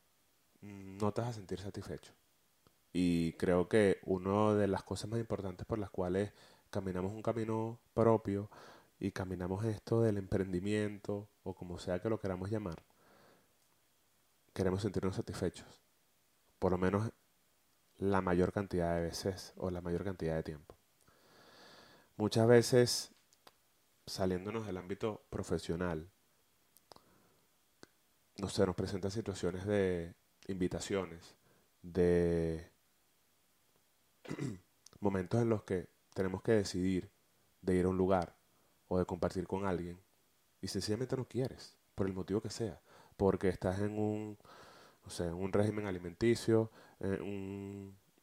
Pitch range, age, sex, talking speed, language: 90-105 Hz, 30-49, male, 125 wpm, Spanish